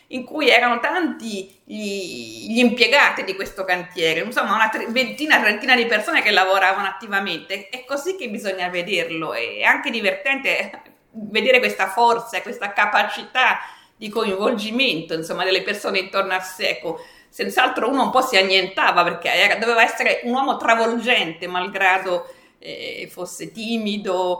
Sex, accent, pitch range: female, native, 185-250 Hz